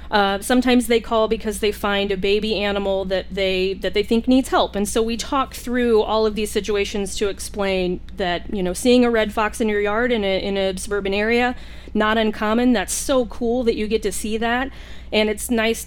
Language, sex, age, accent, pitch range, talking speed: English, female, 30-49, American, 195-230 Hz, 220 wpm